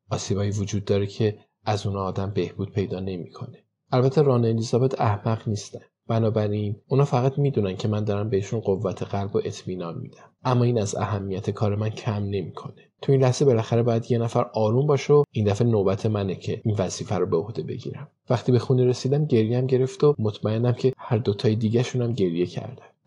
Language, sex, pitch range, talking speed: Persian, male, 100-125 Hz, 185 wpm